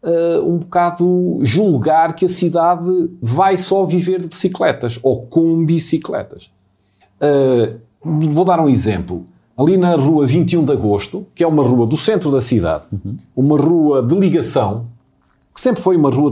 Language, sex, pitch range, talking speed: Portuguese, male, 115-165 Hz, 150 wpm